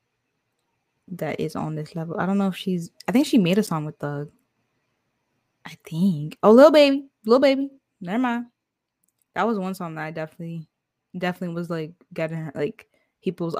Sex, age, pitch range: female, 10-29, 165-205 Hz